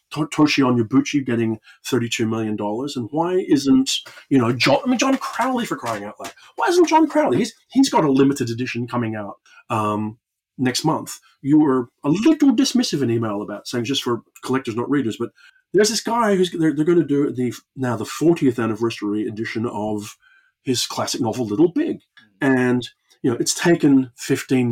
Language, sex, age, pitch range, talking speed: English, male, 30-49, 115-170 Hz, 185 wpm